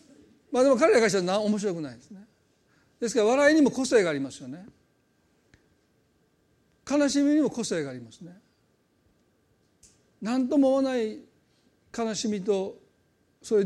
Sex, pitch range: male, 180-235 Hz